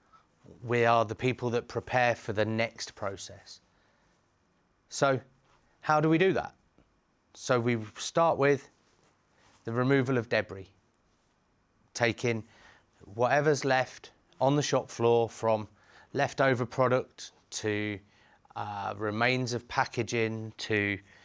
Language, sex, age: English, male, 30-49